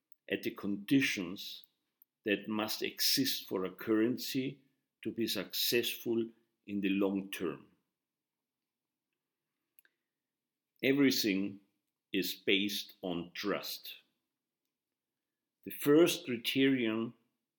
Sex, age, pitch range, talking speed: male, 50-69, 105-140 Hz, 80 wpm